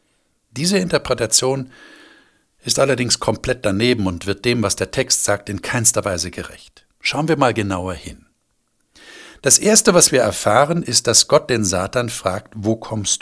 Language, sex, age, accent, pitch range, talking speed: German, male, 60-79, German, 105-140 Hz, 160 wpm